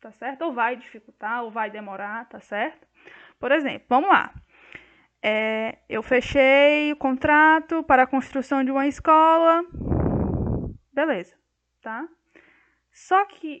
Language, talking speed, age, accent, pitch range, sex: Portuguese, 125 wpm, 10-29, Brazilian, 235-295 Hz, female